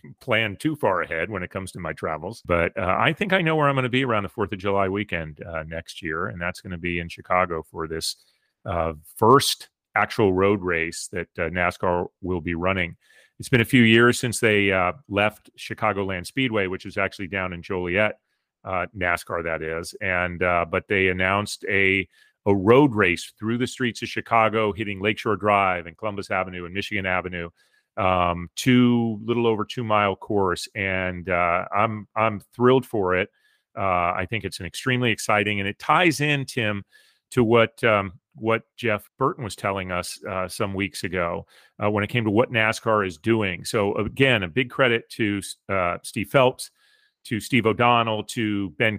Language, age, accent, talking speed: English, 30-49, American, 190 wpm